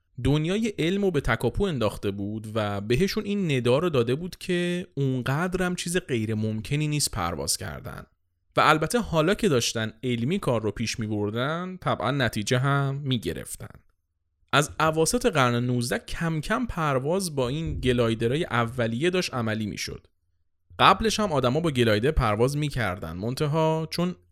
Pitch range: 100-155 Hz